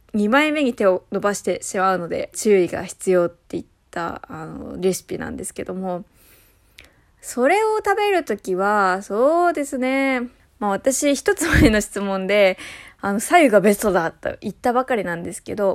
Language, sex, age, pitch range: Japanese, female, 20-39, 190-275 Hz